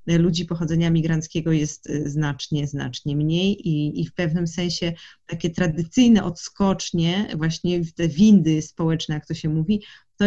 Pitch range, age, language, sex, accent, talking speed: 160-190 Hz, 30-49, Polish, female, native, 140 wpm